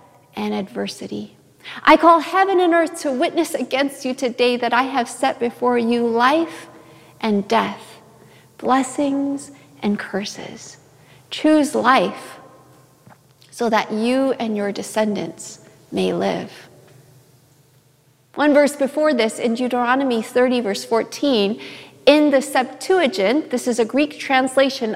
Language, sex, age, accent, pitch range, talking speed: English, female, 40-59, American, 215-280 Hz, 125 wpm